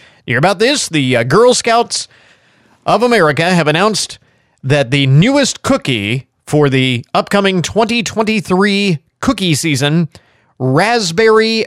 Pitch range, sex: 140-205 Hz, male